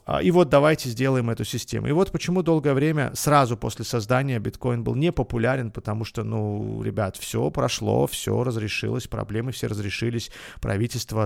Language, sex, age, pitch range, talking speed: Russian, male, 30-49, 110-145 Hz, 155 wpm